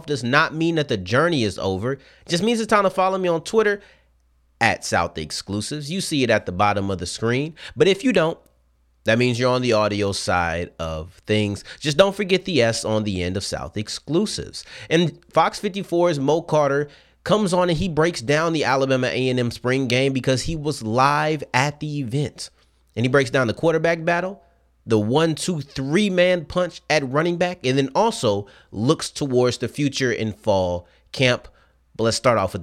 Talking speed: 200 wpm